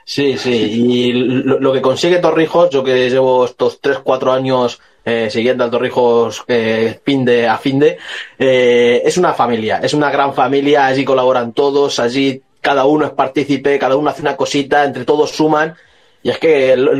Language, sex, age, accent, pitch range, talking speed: Spanish, male, 30-49, Spanish, 125-155 Hz, 185 wpm